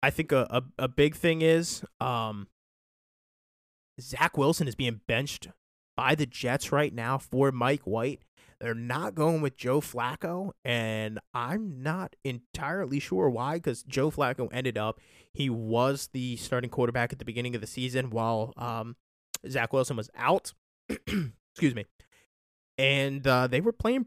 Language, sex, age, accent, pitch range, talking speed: English, male, 20-39, American, 115-140 Hz, 155 wpm